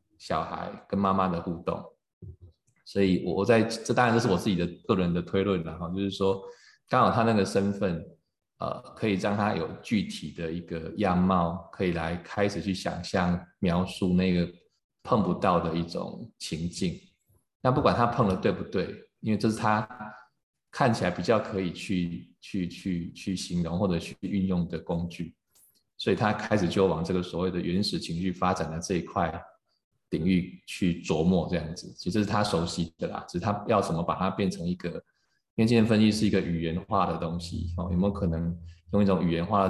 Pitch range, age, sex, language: 85-100 Hz, 20-39, male, Chinese